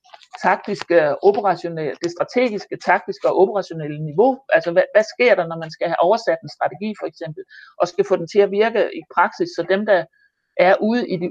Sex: male